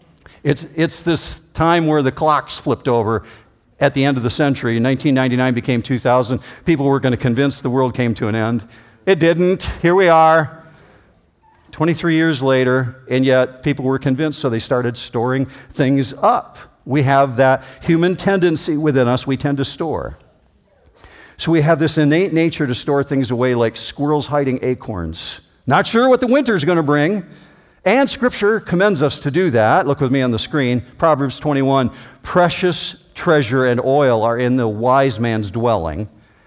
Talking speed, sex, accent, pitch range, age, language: 175 wpm, male, American, 125-160 Hz, 50-69, English